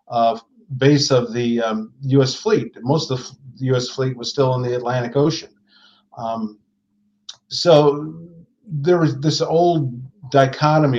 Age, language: 50-69, English